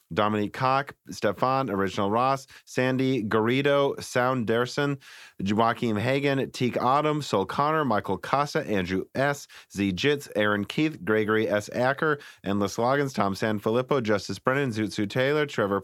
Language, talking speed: English, 135 wpm